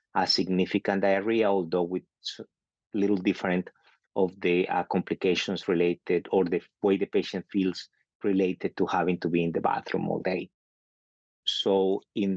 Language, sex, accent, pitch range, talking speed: English, male, Spanish, 90-95 Hz, 145 wpm